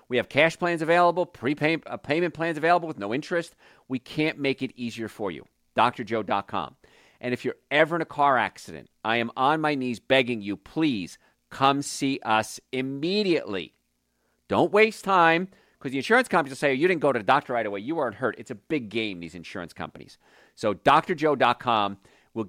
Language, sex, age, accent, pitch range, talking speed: English, male, 40-59, American, 110-155 Hz, 190 wpm